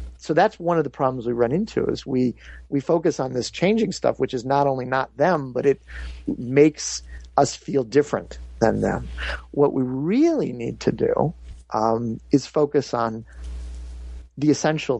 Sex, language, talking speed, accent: male, English, 175 wpm, American